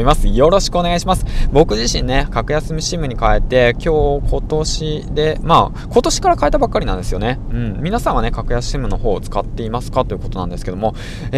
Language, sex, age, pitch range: Japanese, male, 20-39, 105-155 Hz